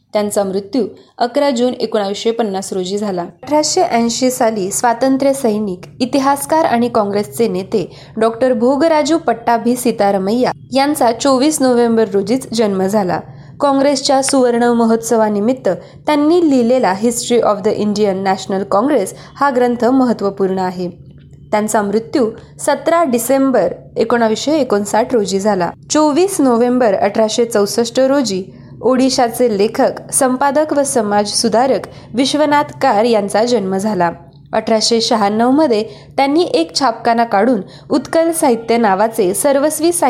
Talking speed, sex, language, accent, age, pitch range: 95 wpm, female, Marathi, native, 20-39, 210-265 Hz